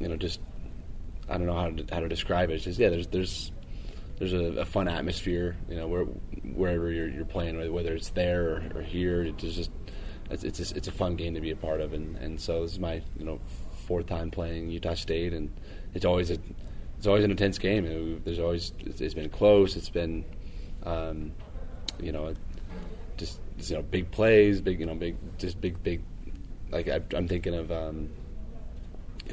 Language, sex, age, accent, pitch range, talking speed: English, male, 20-39, American, 80-90 Hz, 210 wpm